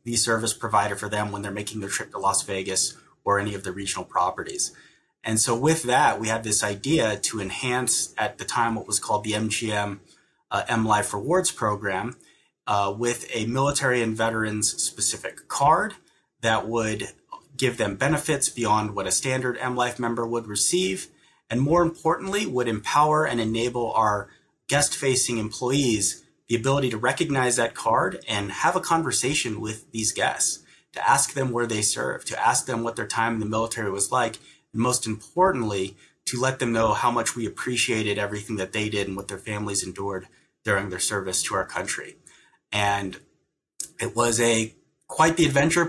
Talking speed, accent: 175 wpm, American